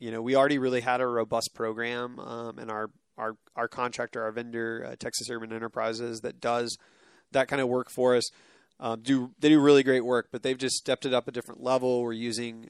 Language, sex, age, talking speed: English, male, 30-49, 220 wpm